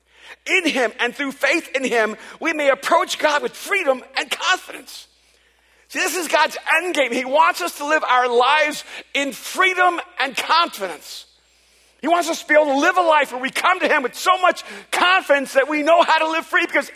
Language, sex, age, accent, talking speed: English, male, 50-69, American, 210 wpm